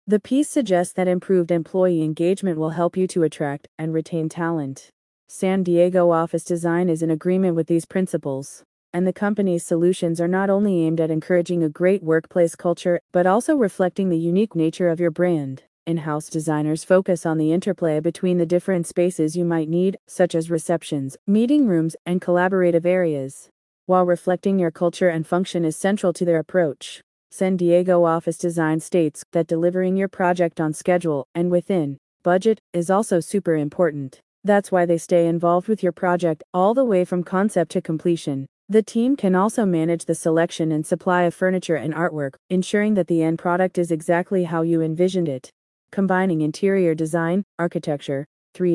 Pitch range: 165-185 Hz